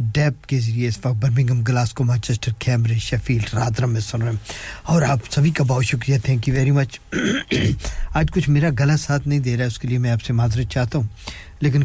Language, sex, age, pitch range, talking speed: English, male, 50-69, 125-150 Hz, 190 wpm